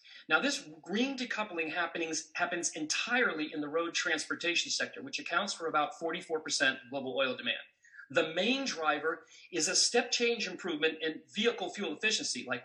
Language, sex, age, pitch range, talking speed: English, male, 40-59, 160-240 Hz, 155 wpm